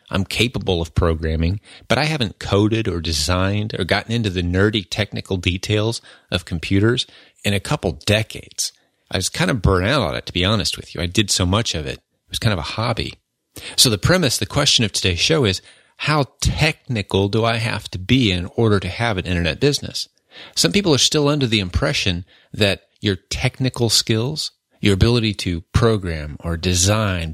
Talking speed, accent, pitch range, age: 195 wpm, American, 95-120 Hz, 30-49